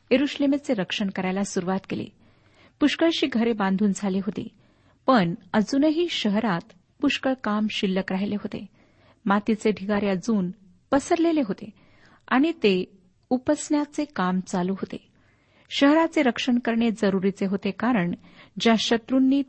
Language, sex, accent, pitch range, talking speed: Marathi, female, native, 195-250 Hz, 110 wpm